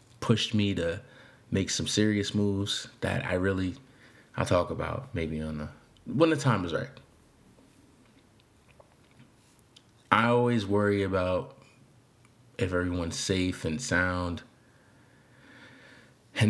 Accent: American